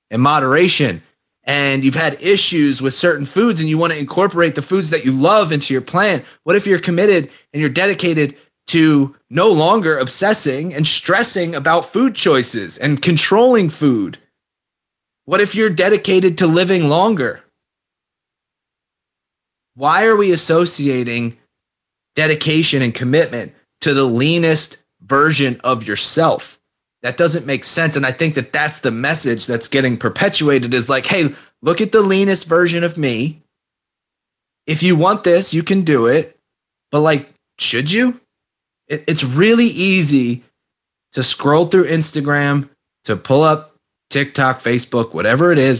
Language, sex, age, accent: English, male, 30-49, American